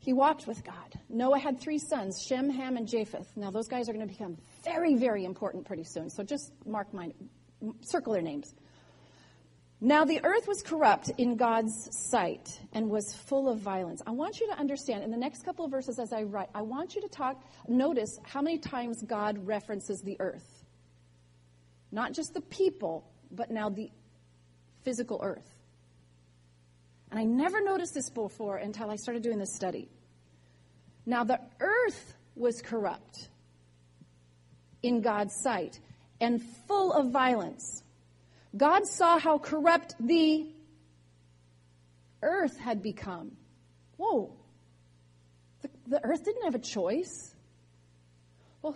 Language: English